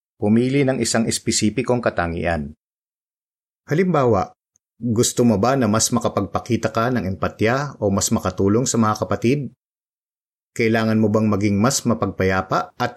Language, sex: Filipino, male